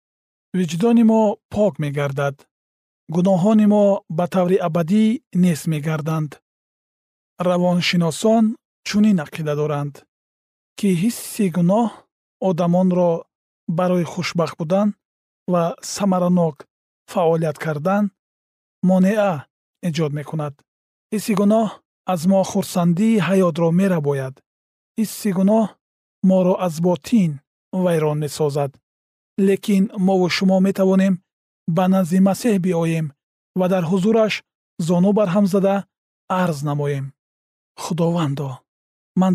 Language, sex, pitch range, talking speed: Persian, male, 150-195 Hz, 110 wpm